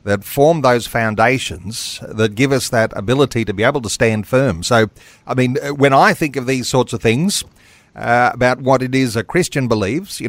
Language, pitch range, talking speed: English, 110-140 Hz, 205 wpm